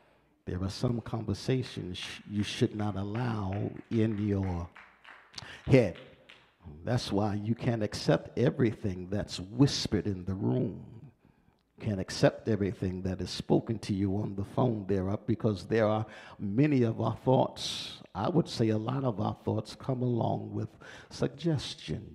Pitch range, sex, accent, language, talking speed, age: 105-130 Hz, male, American, English, 145 wpm, 50-69